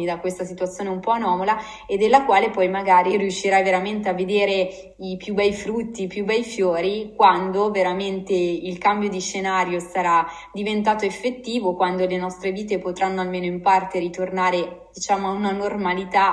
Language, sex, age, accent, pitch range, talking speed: Italian, female, 20-39, native, 185-205 Hz, 165 wpm